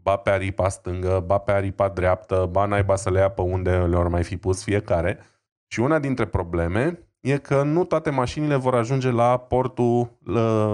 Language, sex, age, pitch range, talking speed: Romanian, male, 20-39, 95-130 Hz, 190 wpm